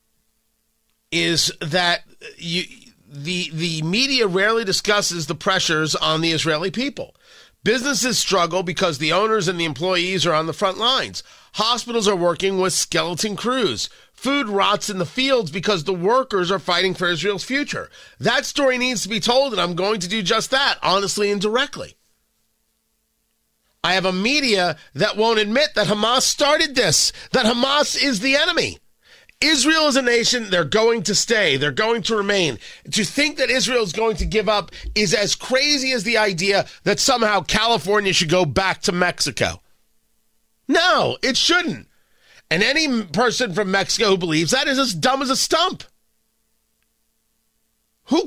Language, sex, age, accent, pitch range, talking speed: English, male, 40-59, American, 185-255 Hz, 160 wpm